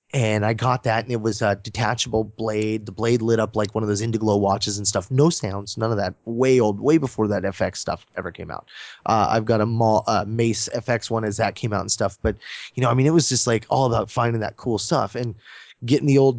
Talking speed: 260 wpm